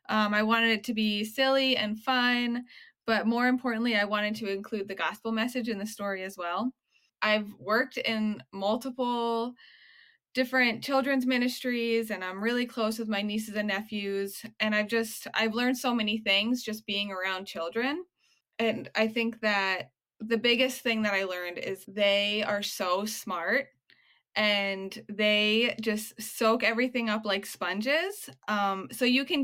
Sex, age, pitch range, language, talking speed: female, 20-39, 205-245 Hz, English, 160 wpm